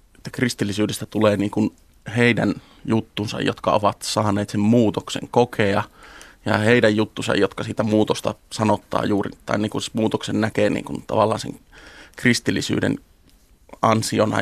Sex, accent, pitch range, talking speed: male, native, 105-120 Hz, 135 wpm